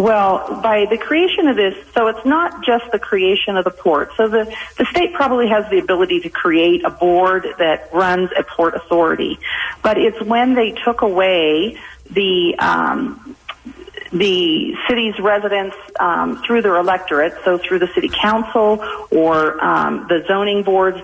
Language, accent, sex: English, American, female